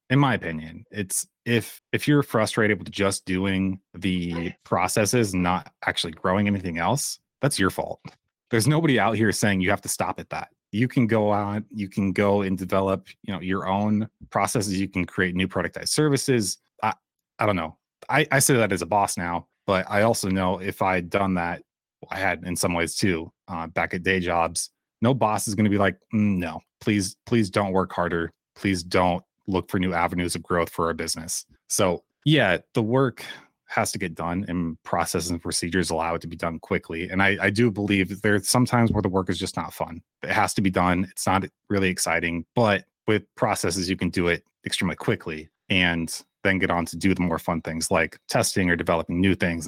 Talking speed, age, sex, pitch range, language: 210 wpm, 30-49, male, 85-105 Hz, English